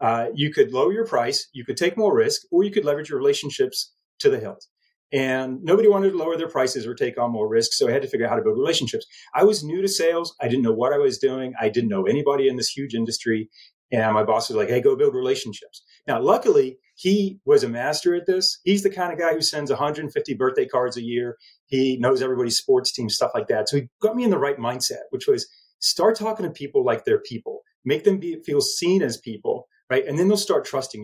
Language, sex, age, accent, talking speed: English, male, 30-49, American, 245 wpm